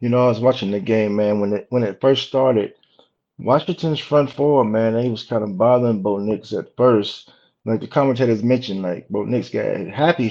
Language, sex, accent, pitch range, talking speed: English, male, American, 105-125 Hz, 210 wpm